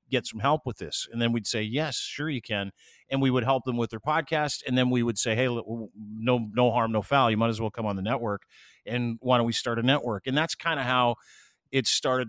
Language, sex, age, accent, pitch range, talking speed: English, male, 40-59, American, 115-135 Hz, 265 wpm